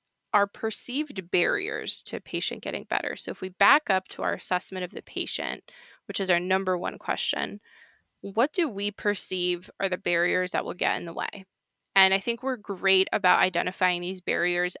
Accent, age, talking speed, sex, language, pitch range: American, 20-39, 185 wpm, female, English, 185-210 Hz